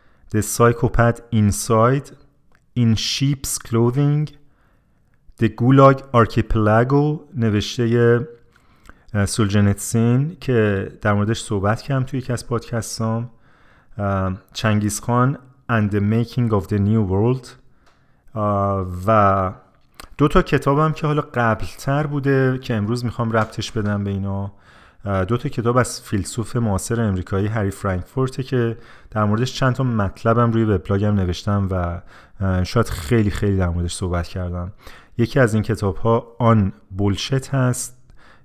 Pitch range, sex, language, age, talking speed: 100-125 Hz, male, Persian, 30-49, 120 wpm